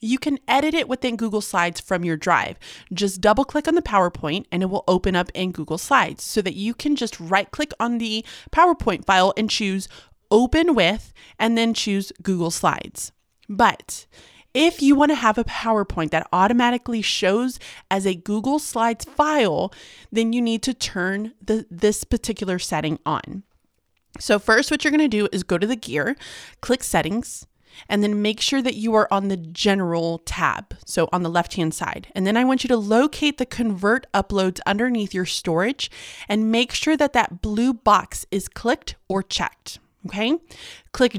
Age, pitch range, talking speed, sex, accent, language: 30-49, 190-240 Hz, 180 wpm, female, American, English